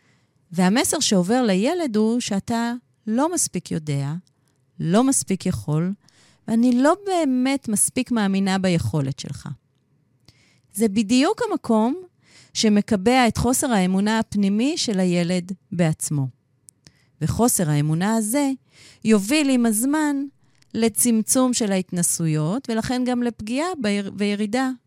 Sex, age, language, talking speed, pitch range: female, 30-49, Hebrew, 100 wpm, 150-235 Hz